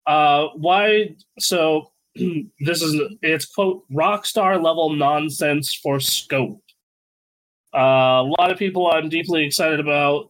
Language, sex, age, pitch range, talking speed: English, male, 20-39, 130-175 Hz, 130 wpm